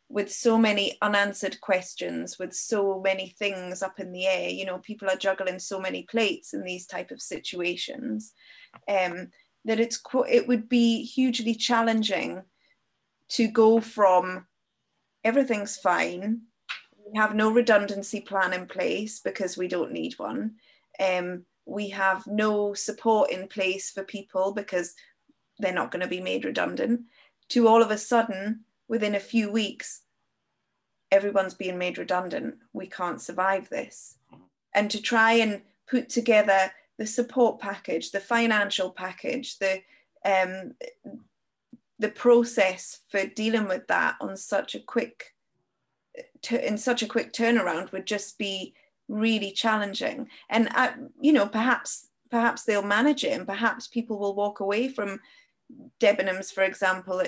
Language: English